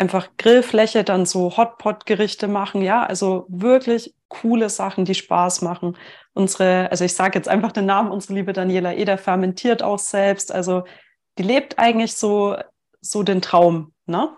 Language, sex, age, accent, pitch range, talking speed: German, female, 30-49, German, 185-215 Hz, 160 wpm